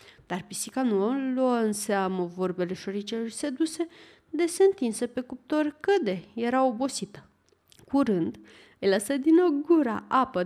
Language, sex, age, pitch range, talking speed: Romanian, female, 20-39, 200-310 Hz, 145 wpm